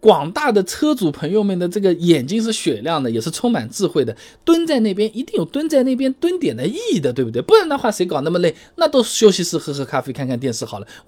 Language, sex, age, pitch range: Chinese, male, 20-39, 150-245 Hz